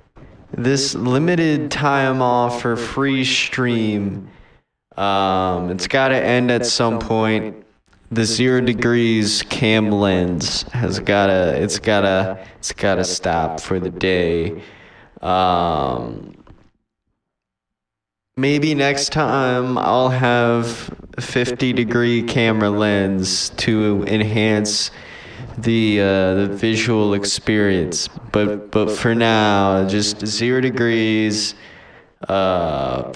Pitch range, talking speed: 95-120 Hz, 100 wpm